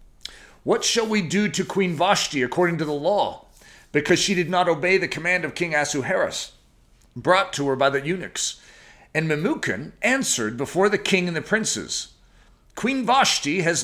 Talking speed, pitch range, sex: 170 wpm, 155-195 Hz, male